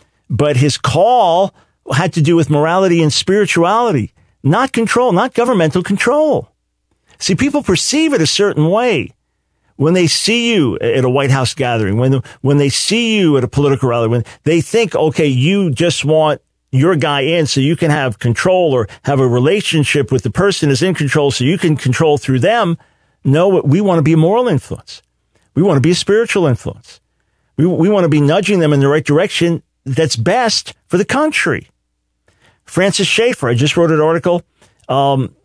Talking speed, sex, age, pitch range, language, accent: 185 wpm, male, 50-69, 135-180 Hz, English, American